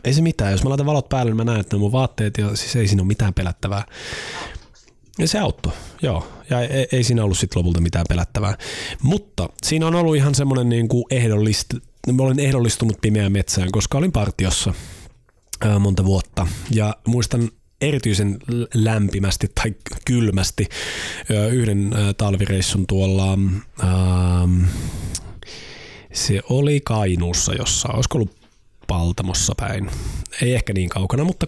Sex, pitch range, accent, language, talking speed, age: male, 95-120 Hz, native, Finnish, 140 wpm, 30-49